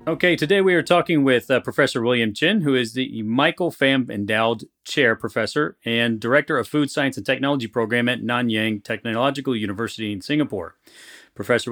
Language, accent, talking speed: English, American, 170 wpm